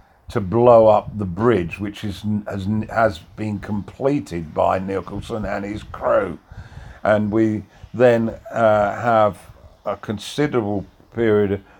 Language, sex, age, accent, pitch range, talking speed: English, male, 50-69, British, 95-120 Hz, 120 wpm